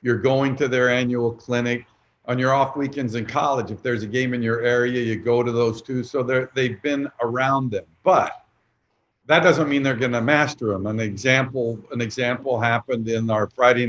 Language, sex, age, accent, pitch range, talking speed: English, male, 50-69, American, 120-140 Hz, 190 wpm